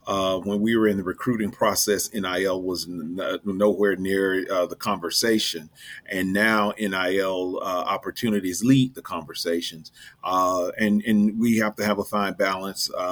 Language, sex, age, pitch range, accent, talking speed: English, male, 40-59, 95-110 Hz, American, 155 wpm